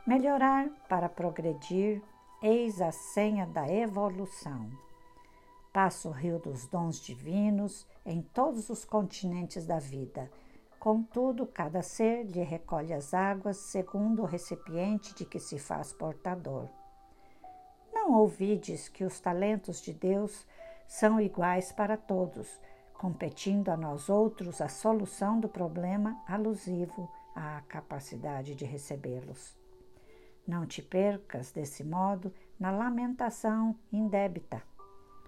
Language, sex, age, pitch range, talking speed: Portuguese, female, 60-79, 165-215 Hz, 115 wpm